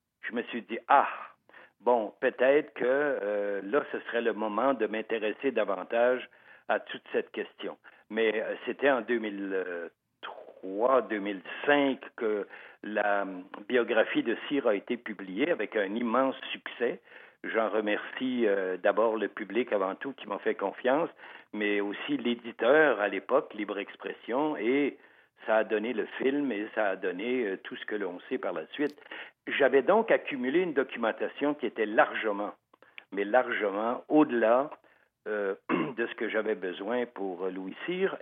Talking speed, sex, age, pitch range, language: 150 wpm, male, 60-79, 105-145 Hz, French